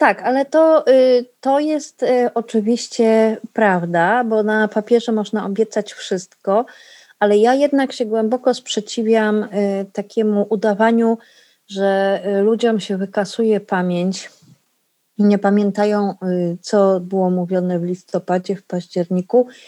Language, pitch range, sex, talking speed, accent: Polish, 190-235 Hz, female, 110 wpm, native